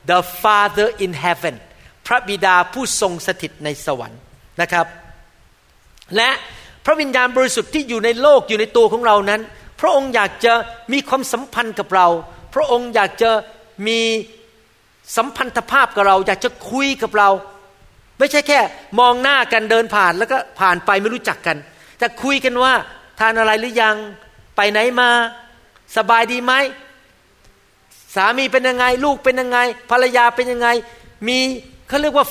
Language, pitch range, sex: Thai, 185-255 Hz, male